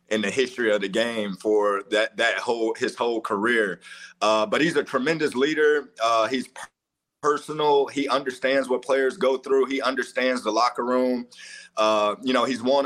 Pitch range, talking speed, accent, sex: 110-135 Hz, 175 wpm, American, male